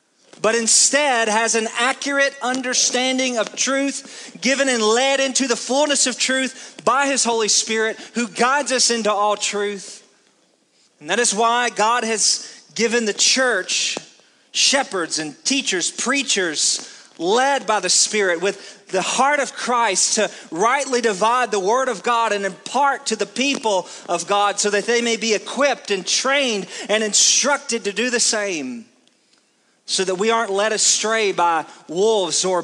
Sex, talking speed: male, 155 wpm